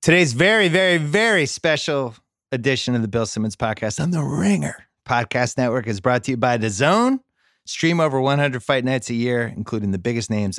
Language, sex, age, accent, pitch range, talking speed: English, male, 30-49, American, 110-160 Hz, 195 wpm